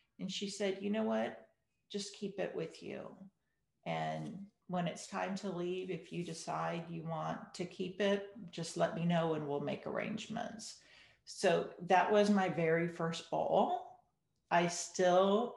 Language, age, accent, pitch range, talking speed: English, 50-69, American, 170-210 Hz, 160 wpm